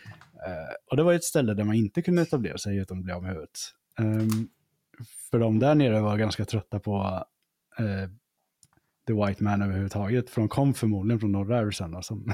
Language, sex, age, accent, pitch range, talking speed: Swedish, male, 20-39, Norwegian, 100-130 Hz, 190 wpm